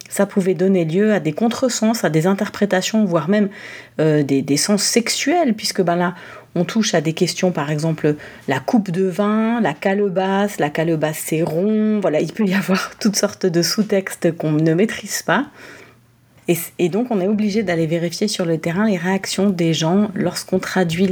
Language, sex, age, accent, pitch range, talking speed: French, female, 30-49, French, 170-210 Hz, 190 wpm